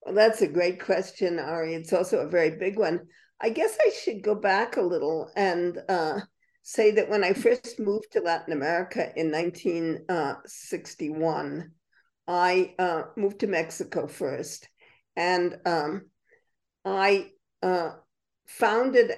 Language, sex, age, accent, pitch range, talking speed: English, female, 50-69, American, 165-205 Hz, 140 wpm